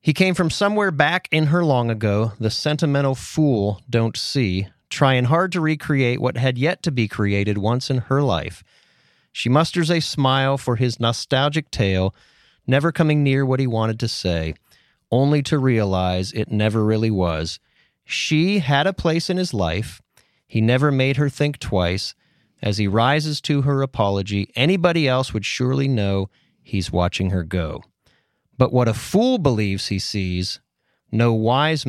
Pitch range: 105-140 Hz